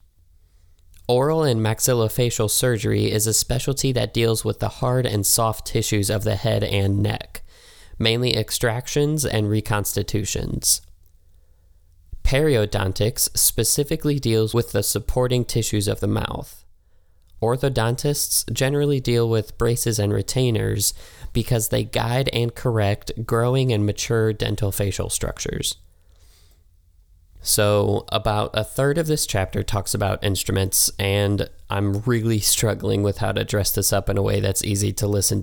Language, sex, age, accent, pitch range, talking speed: English, male, 20-39, American, 95-115 Hz, 135 wpm